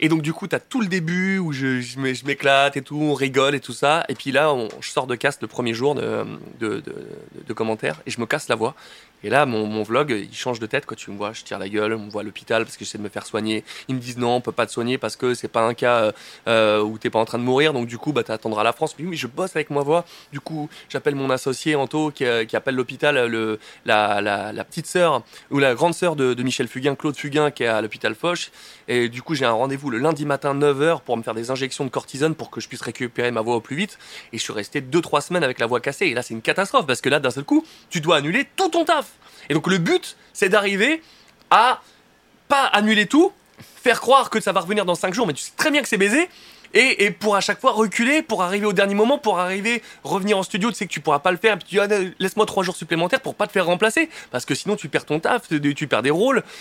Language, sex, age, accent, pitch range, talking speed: French, male, 20-39, French, 120-190 Hz, 285 wpm